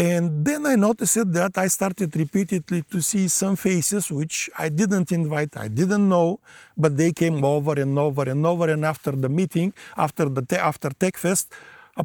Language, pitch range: English, 150-180 Hz